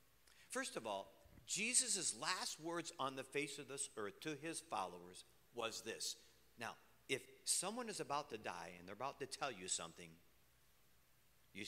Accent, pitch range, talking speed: American, 95-145 Hz, 165 wpm